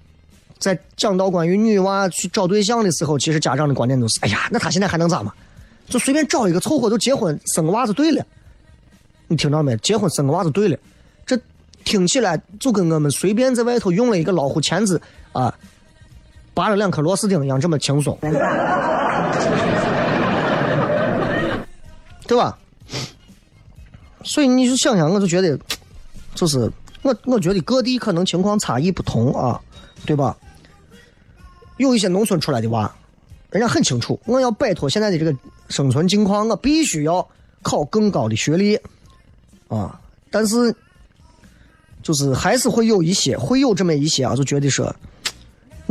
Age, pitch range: 30-49, 150-215 Hz